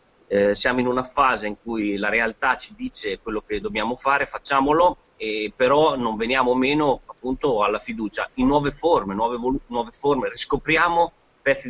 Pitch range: 115-150 Hz